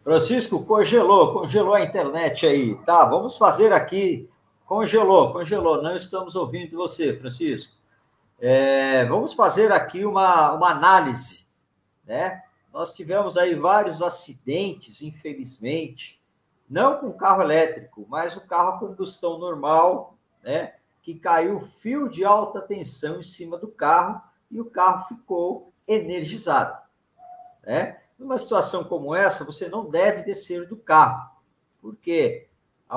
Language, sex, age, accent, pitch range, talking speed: Portuguese, male, 50-69, Brazilian, 155-225 Hz, 125 wpm